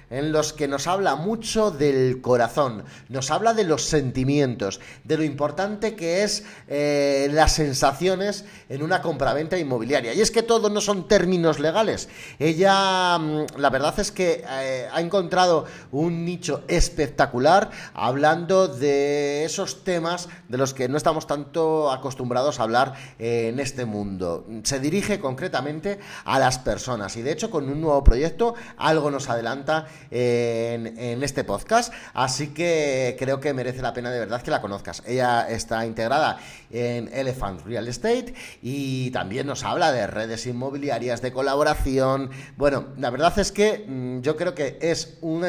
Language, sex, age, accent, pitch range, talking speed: Spanish, male, 30-49, Spanish, 120-165 Hz, 155 wpm